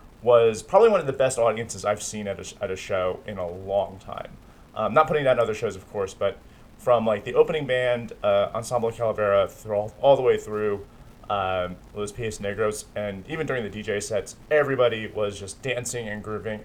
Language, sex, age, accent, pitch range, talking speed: English, male, 30-49, American, 105-140 Hz, 210 wpm